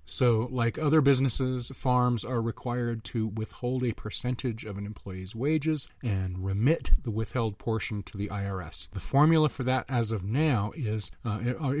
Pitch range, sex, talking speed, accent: 105-125 Hz, male, 165 wpm, American